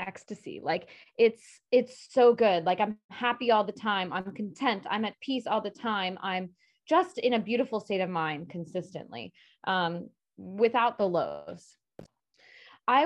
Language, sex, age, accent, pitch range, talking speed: English, female, 20-39, American, 185-245 Hz, 155 wpm